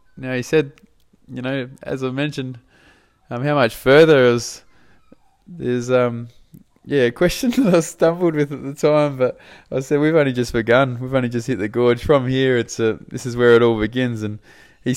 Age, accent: 20-39, Australian